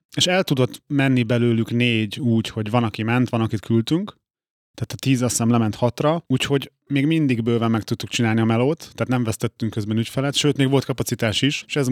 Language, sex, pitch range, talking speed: Hungarian, male, 115-140 Hz, 205 wpm